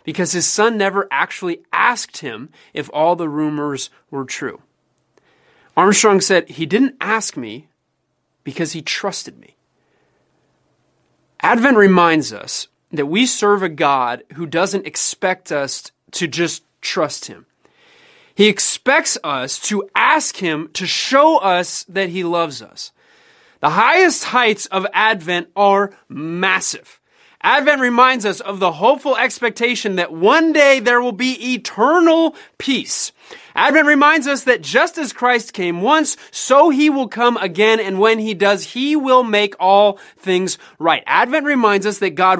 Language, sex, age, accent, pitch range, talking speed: English, male, 30-49, American, 180-275 Hz, 145 wpm